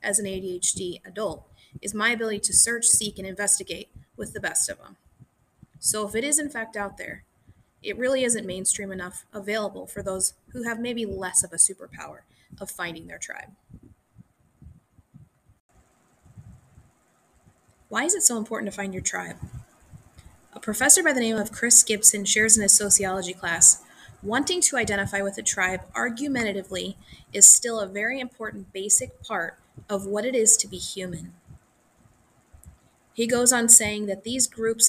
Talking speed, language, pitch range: 160 wpm, English, 195-235 Hz